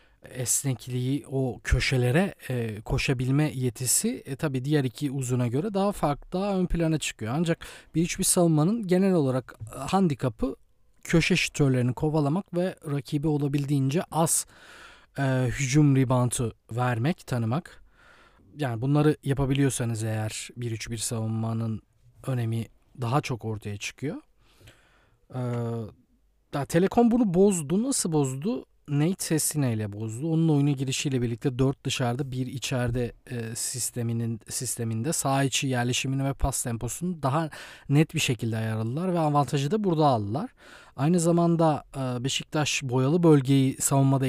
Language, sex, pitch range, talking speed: Turkish, male, 125-155 Hz, 125 wpm